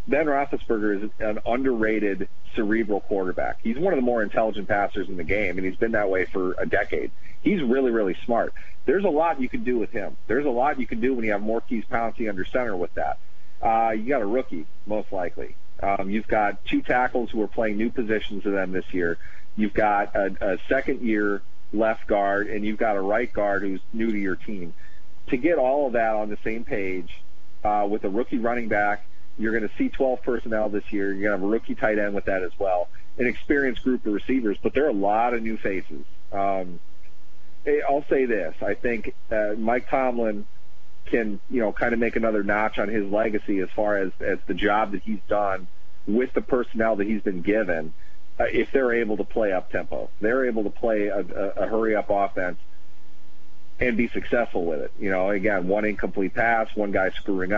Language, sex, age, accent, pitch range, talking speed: English, male, 40-59, American, 95-110 Hz, 215 wpm